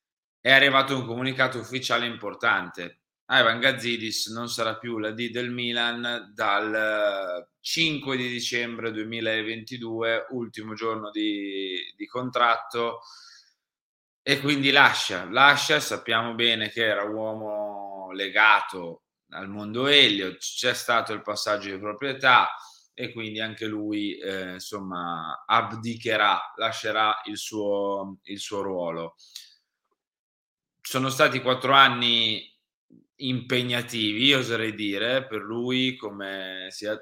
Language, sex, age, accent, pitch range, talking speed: Italian, male, 20-39, native, 105-125 Hz, 110 wpm